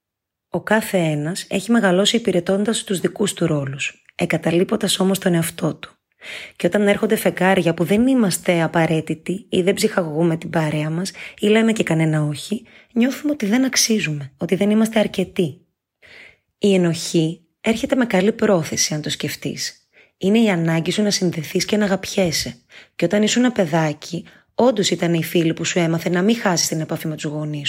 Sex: female